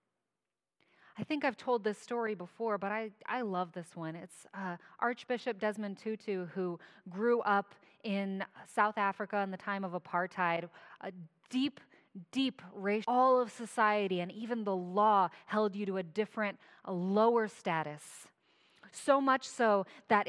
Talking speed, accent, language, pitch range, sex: 150 wpm, American, English, 185-225 Hz, female